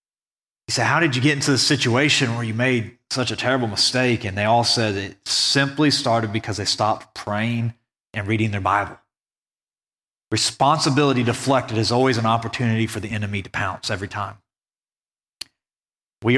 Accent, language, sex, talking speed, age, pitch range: American, English, male, 165 wpm, 30-49, 115-150 Hz